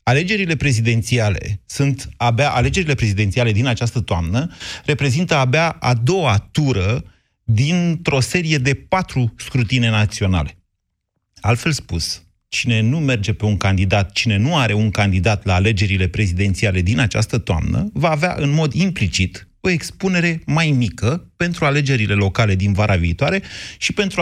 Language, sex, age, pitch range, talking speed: Romanian, male, 30-49, 105-145 Hz, 140 wpm